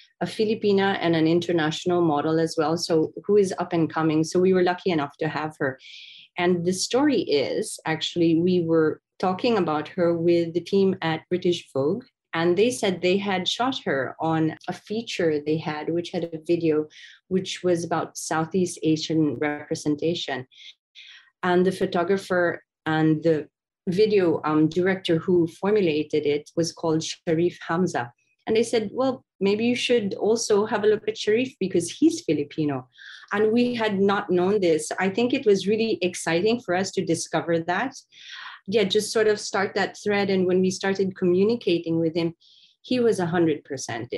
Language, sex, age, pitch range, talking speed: English, female, 30-49, 160-200 Hz, 170 wpm